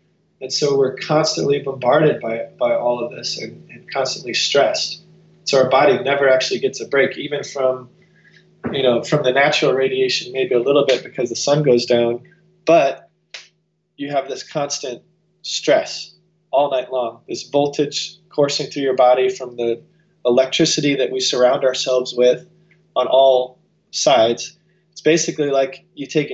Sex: male